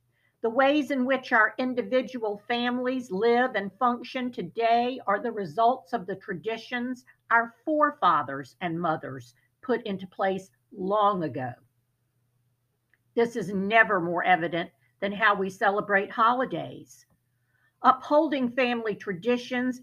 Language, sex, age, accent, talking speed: English, female, 50-69, American, 120 wpm